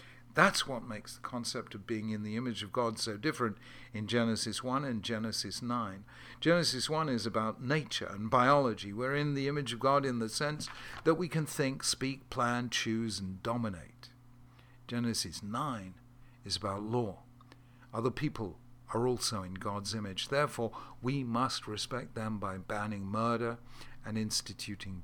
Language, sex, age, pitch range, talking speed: English, male, 50-69, 110-130 Hz, 160 wpm